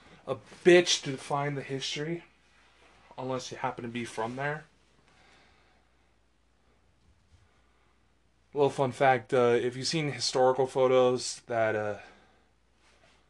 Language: English